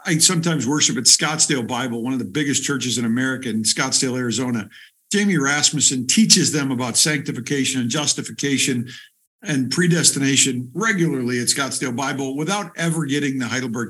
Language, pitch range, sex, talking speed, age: English, 125-160 Hz, male, 150 wpm, 50-69